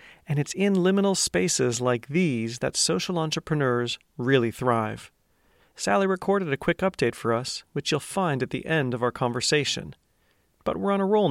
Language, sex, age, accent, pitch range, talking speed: English, male, 40-59, American, 130-180 Hz, 175 wpm